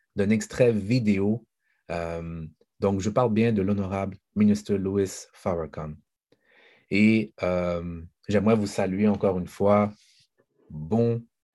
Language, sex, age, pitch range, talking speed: French, male, 30-49, 90-110 Hz, 115 wpm